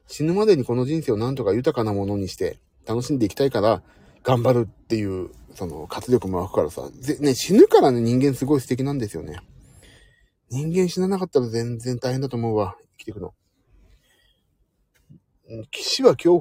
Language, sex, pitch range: Japanese, male, 105-150 Hz